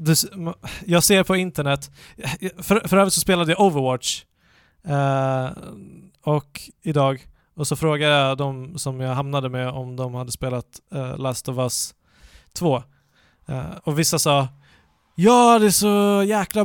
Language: Swedish